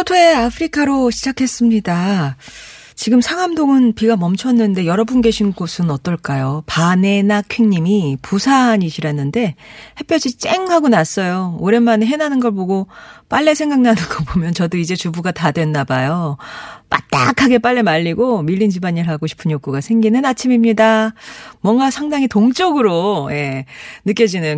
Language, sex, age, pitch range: Korean, female, 40-59, 175-245 Hz